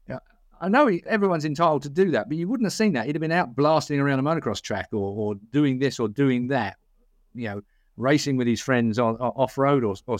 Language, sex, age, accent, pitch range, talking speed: English, male, 50-69, British, 115-160 Hz, 225 wpm